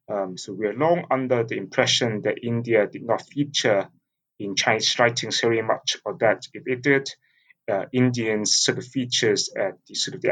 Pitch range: 105-135 Hz